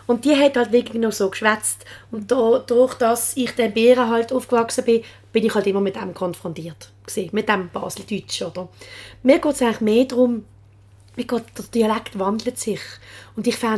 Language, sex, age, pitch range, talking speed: German, female, 30-49, 210-255 Hz, 190 wpm